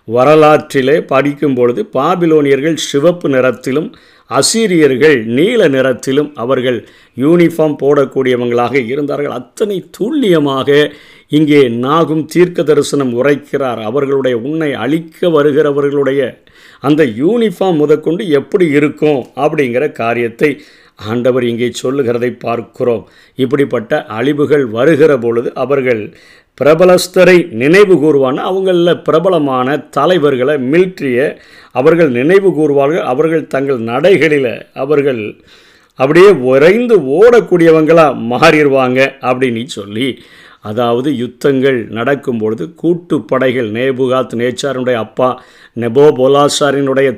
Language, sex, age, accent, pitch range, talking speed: Tamil, male, 50-69, native, 125-155 Hz, 85 wpm